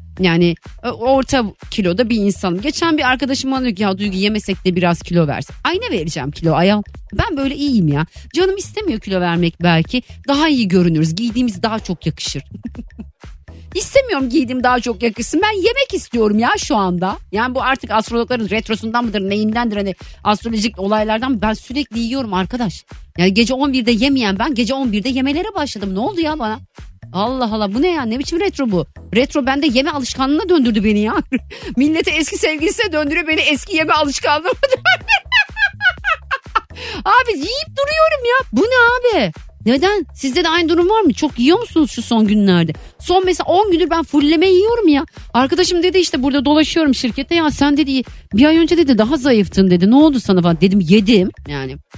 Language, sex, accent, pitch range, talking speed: Turkish, female, native, 205-315 Hz, 175 wpm